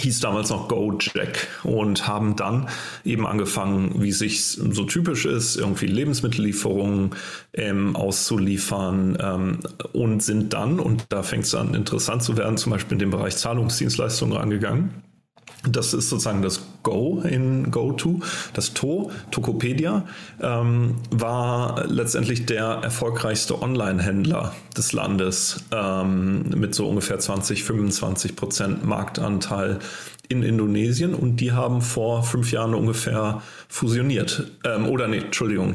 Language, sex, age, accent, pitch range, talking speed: German, male, 40-59, German, 100-120 Hz, 130 wpm